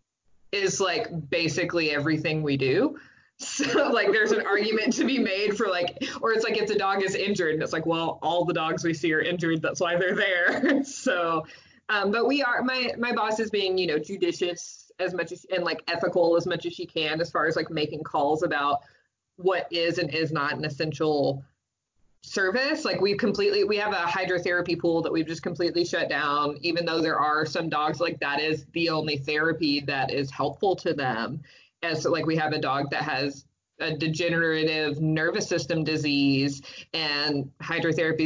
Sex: female